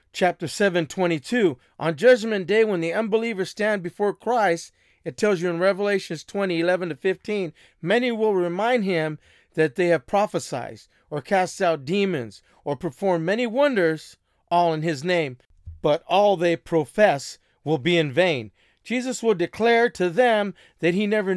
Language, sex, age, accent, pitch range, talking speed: English, male, 40-59, American, 170-215 Hz, 165 wpm